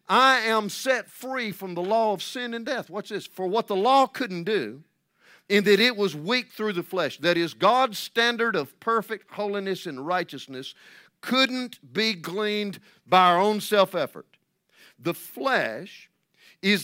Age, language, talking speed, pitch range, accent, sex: 50-69, English, 165 wpm, 155-210 Hz, American, male